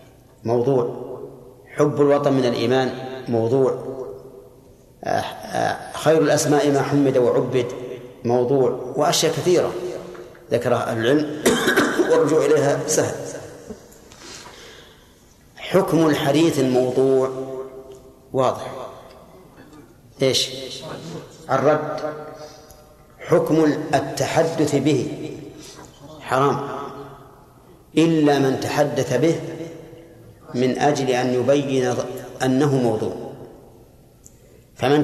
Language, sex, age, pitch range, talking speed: Arabic, male, 50-69, 125-150 Hz, 70 wpm